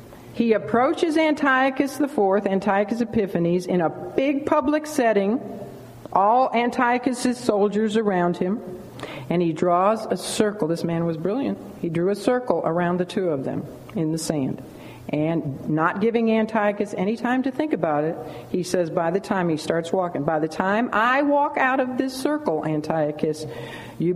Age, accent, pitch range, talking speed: 50-69, American, 150-215 Hz, 165 wpm